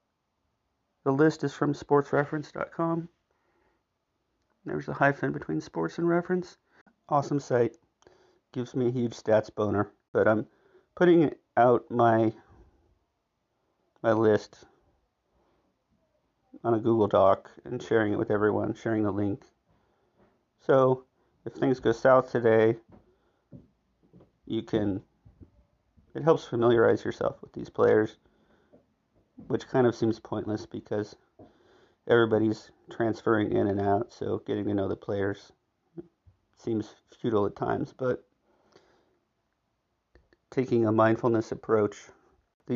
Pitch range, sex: 105-140 Hz, male